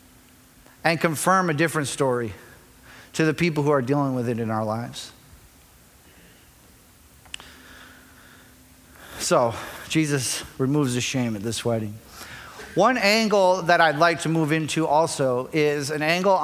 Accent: American